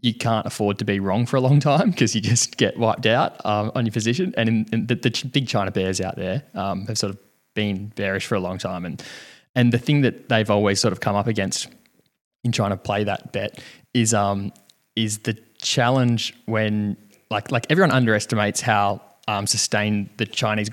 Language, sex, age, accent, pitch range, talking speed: English, male, 20-39, Australian, 105-120 Hz, 215 wpm